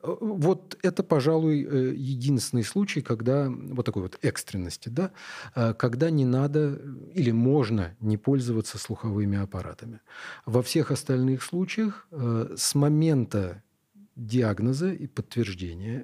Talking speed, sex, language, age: 110 wpm, male, Russian, 40-59